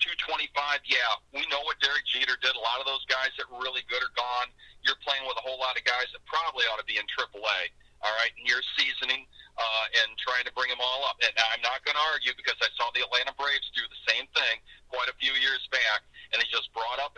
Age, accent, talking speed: 40-59, American, 255 wpm